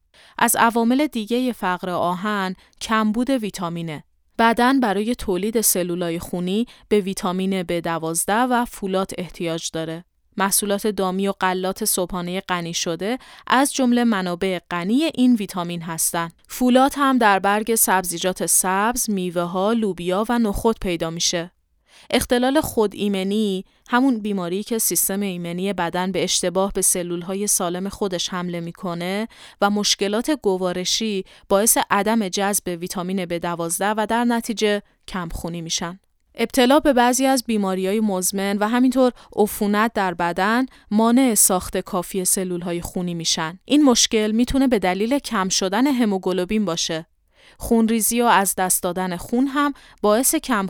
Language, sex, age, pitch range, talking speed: Persian, female, 30-49, 180-225 Hz, 135 wpm